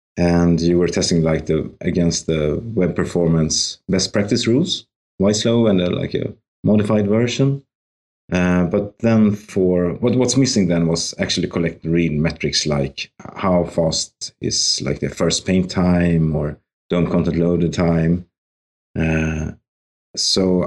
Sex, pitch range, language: male, 80-95 Hz, English